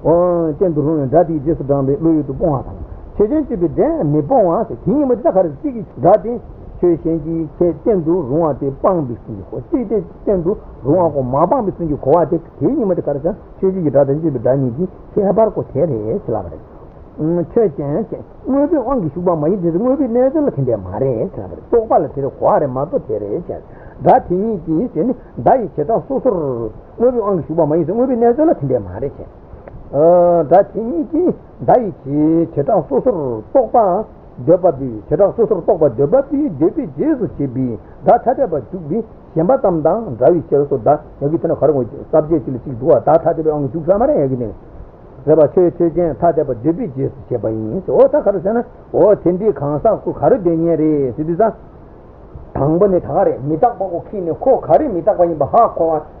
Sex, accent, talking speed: male, Indian, 95 wpm